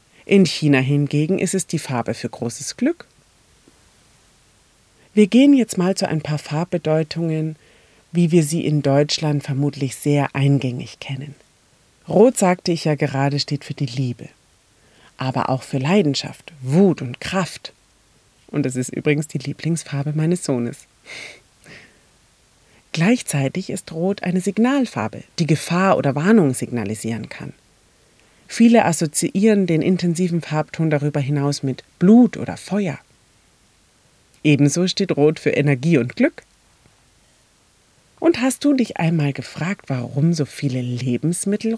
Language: German